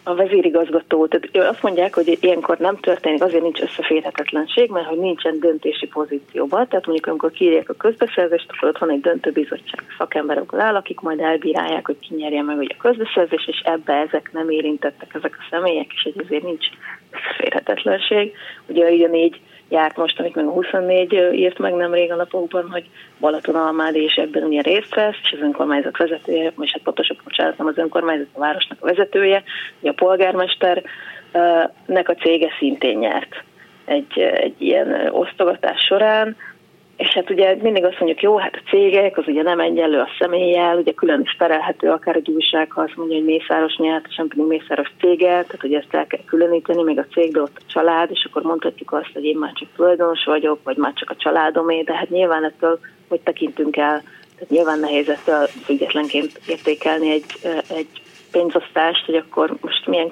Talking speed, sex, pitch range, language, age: 175 wpm, female, 155-180 Hz, Hungarian, 30-49